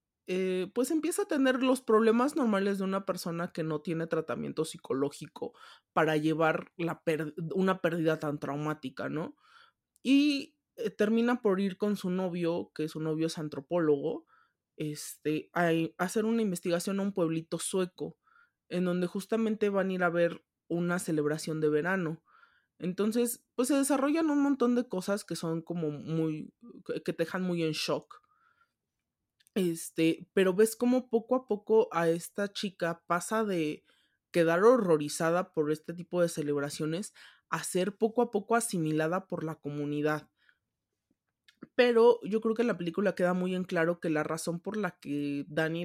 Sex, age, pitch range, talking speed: male, 20-39, 160-215 Hz, 160 wpm